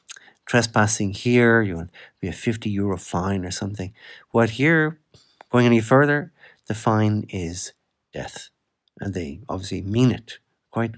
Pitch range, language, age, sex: 100-125 Hz, English, 60-79, male